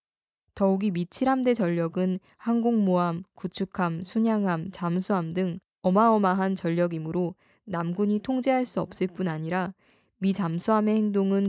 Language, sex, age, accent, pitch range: Korean, female, 20-39, native, 175-205 Hz